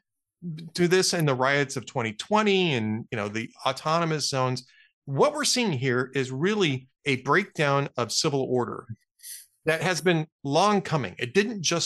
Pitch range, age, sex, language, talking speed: 125-160 Hz, 40-59, male, English, 175 wpm